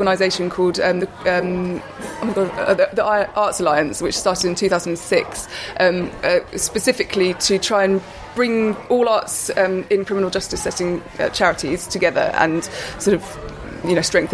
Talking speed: 140 wpm